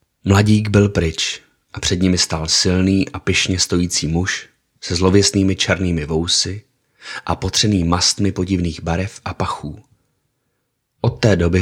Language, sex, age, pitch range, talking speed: Czech, male, 30-49, 85-100 Hz, 135 wpm